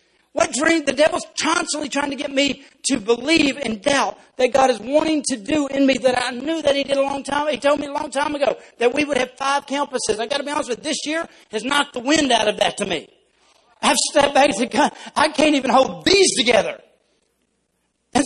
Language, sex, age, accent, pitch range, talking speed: English, male, 40-59, American, 175-275 Hz, 245 wpm